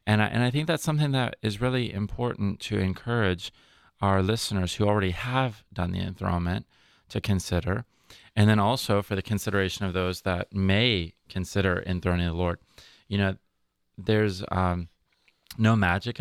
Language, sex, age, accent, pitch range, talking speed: English, male, 30-49, American, 90-110 Hz, 155 wpm